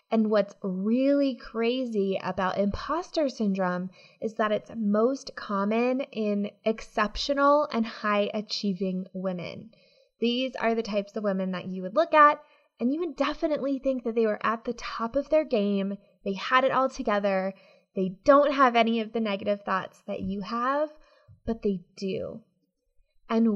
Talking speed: 160 wpm